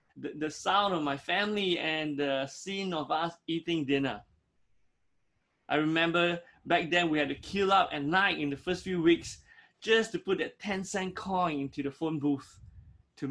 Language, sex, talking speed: English, male, 180 wpm